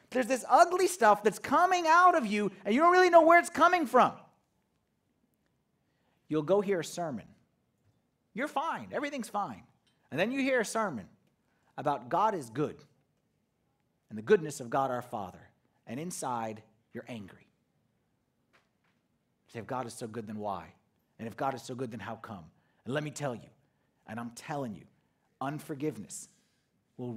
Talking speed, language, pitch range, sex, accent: 170 wpm, English, 120-170 Hz, male, American